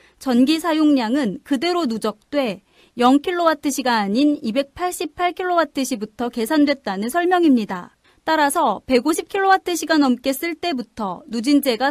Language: Korean